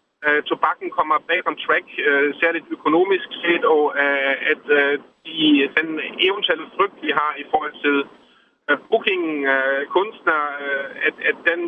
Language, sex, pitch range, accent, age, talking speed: Danish, male, 140-180 Hz, native, 30-49, 130 wpm